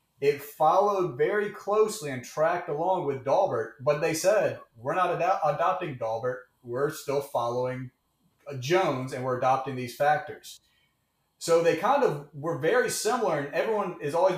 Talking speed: 155 wpm